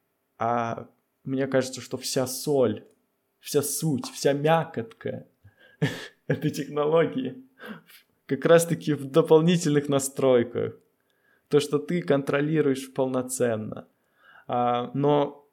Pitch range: 125-145 Hz